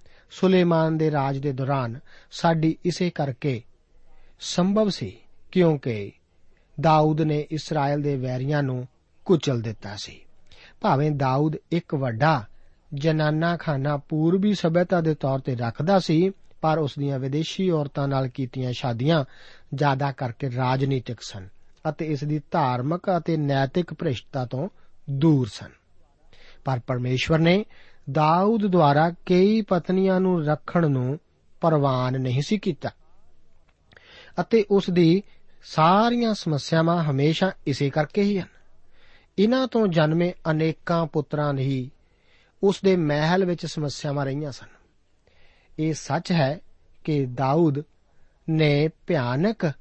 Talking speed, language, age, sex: 75 wpm, Punjabi, 50-69, male